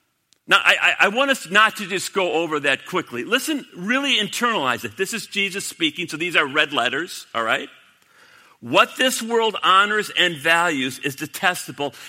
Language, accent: English, American